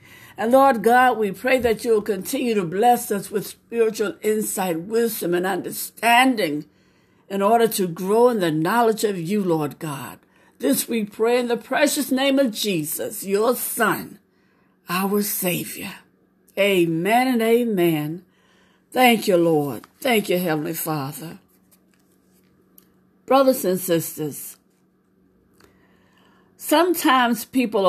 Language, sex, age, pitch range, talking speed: English, female, 60-79, 190-255 Hz, 120 wpm